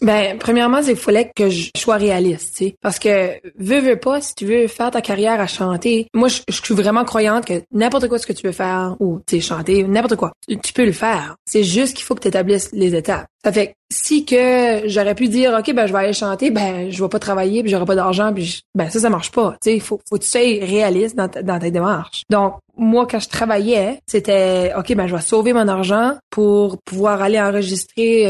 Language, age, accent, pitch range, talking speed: French, 20-39, Canadian, 190-225 Hz, 245 wpm